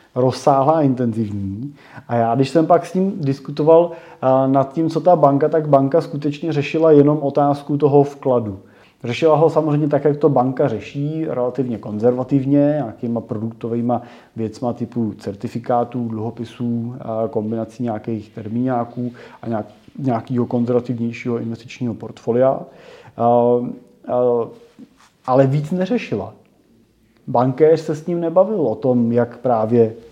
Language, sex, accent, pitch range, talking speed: Czech, male, native, 120-140 Hz, 120 wpm